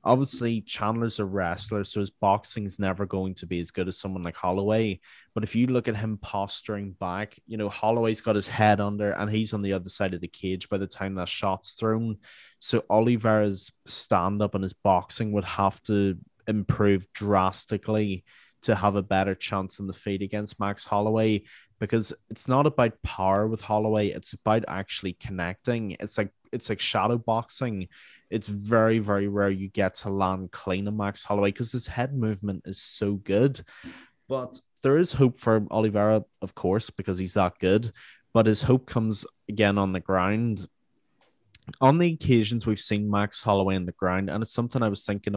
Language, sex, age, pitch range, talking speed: English, male, 20-39, 95-110 Hz, 190 wpm